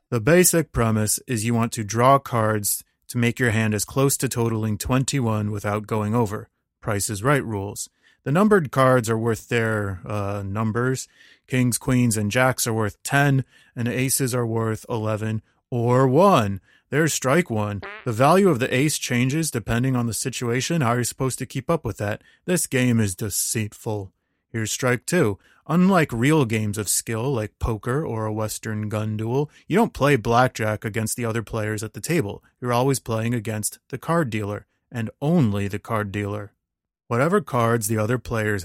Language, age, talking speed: English, 30-49, 180 wpm